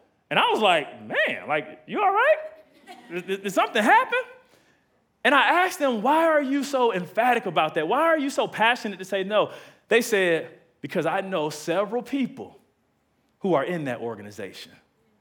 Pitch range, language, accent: 190-280 Hz, English, American